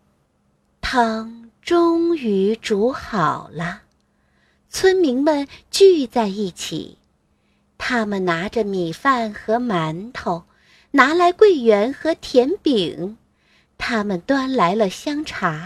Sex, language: female, Chinese